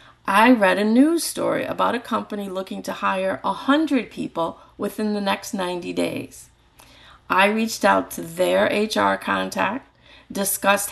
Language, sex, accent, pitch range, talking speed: English, female, American, 185-235 Hz, 150 wpm